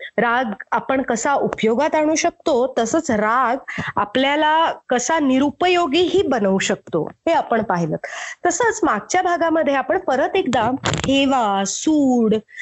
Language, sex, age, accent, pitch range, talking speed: Marathi, female, 30-49, native, 220-310 Hz, 90 wpm